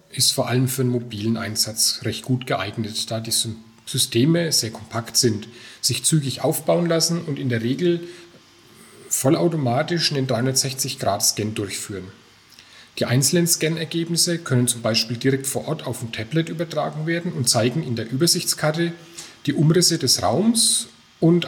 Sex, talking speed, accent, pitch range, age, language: male, 145 wpm, German, 115-155 Hz, 10-29, German